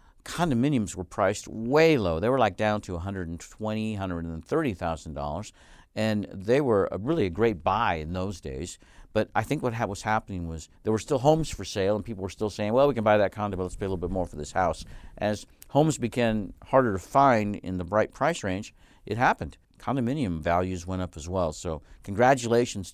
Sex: male